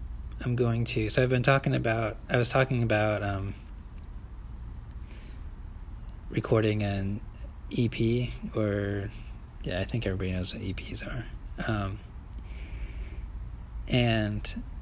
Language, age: English, 20-39